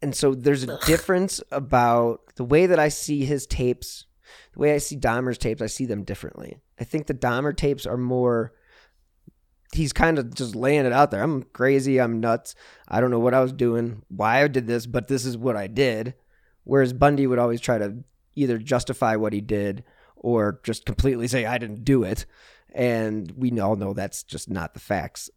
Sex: male